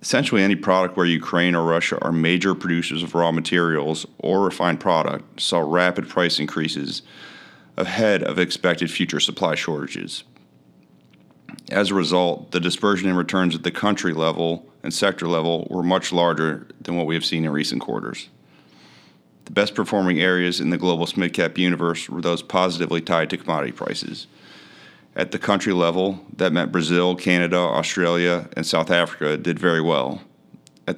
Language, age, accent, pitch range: English, 40-59, American, 80-90 Hz